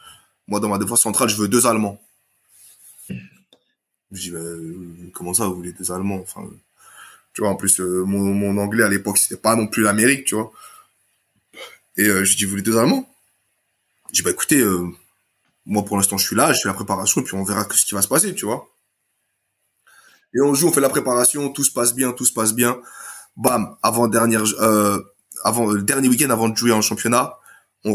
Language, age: French, 20-39